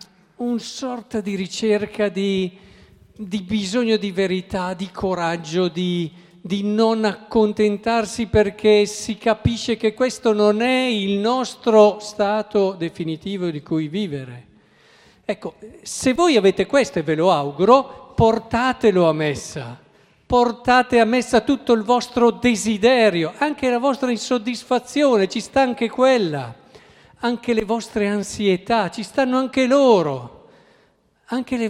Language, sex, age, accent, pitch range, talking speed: Italian, male, 50-69, native, 180-240 Hz, 125 wpm